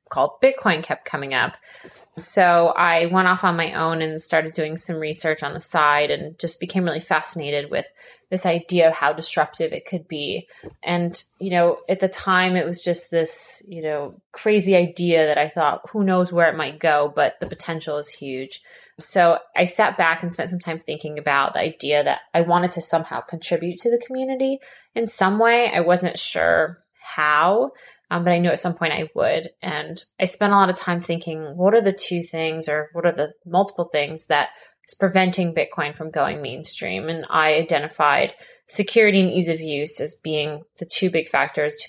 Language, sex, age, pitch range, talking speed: English, female, 20-39, 155-185 Hz, 200 wpm